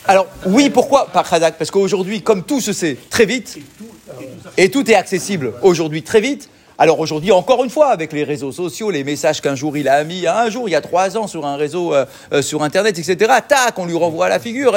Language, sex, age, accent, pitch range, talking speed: French, male, 40-59, French, 145-220 Hz, 225 wpm